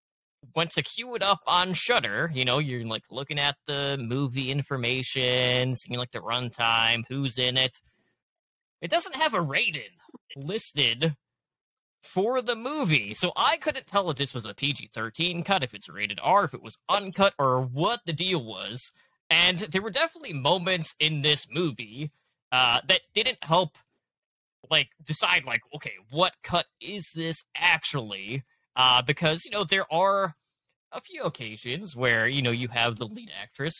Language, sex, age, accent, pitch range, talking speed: English, male, 20-39, American, 130-195 Hz, 165 wpm